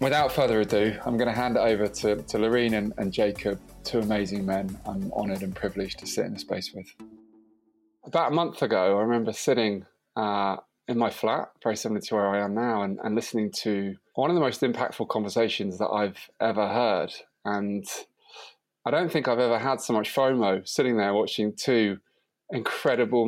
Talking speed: 190 wpm